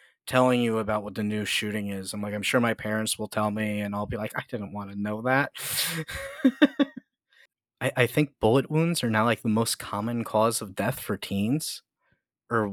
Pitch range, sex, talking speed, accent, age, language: 110-175 Hz, male, 205 wpm, American, 30-49, English